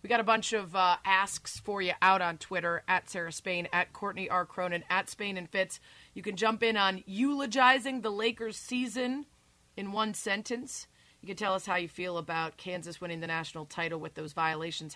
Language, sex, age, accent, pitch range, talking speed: English, female, 30-49, American, 170-220 Hz, 205 wpm